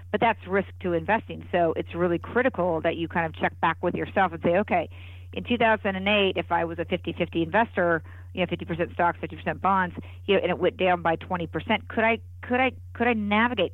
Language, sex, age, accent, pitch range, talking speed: English, female, 50-69, American, 160-190 Hz, 215 wpm